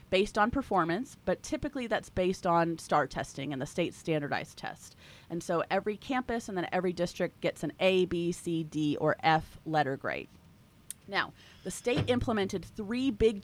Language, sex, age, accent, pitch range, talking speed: English, female, 30-49, American, 160-210 Hz, 175 wpm